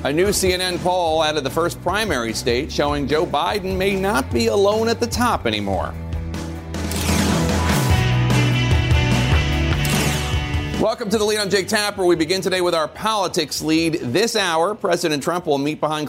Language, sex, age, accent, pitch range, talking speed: English, male, 40-59, American, 115-165 Hz, 155 wpm